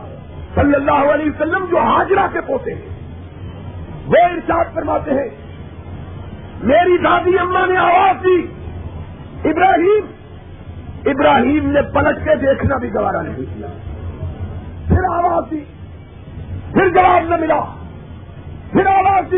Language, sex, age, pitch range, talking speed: Urdu, male, 50-69, 295-380 Hz, 120 wpm